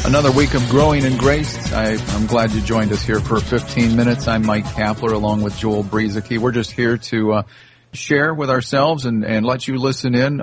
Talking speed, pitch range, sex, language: 215 wpm, 110-130 Hz, male, English